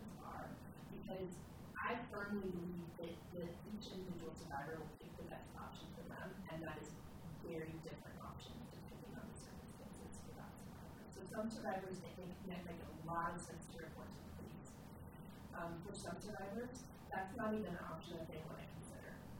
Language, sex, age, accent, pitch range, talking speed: English, female, 30-49, American, 170-205 Hz, 175 wpm